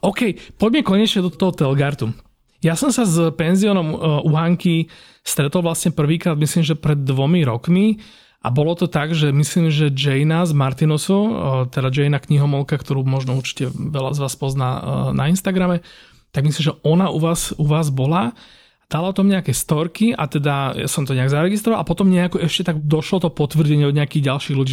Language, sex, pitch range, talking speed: Slovak, male, 140-175 Hz, 185 wpm